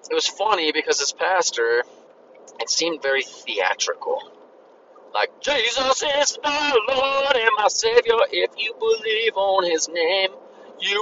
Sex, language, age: male, English, 30-49